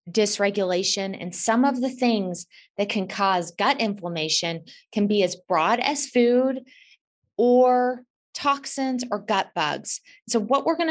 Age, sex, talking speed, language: 20-39, female, 145 wpm, English